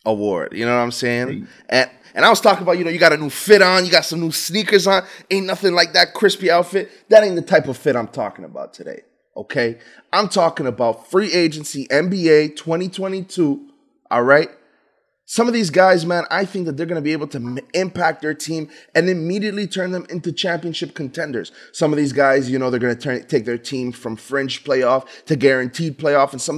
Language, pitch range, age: English, 120-165 Hz, 20-39